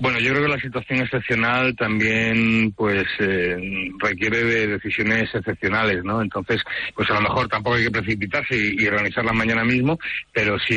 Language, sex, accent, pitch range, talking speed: English, male, Spanish, 100-115 Hz, 175 wpm